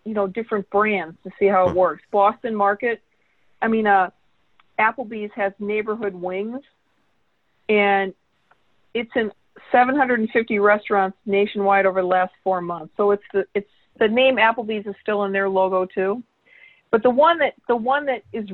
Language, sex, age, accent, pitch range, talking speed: English, female, 50-69, American, 200-245 Hz, 160 wpm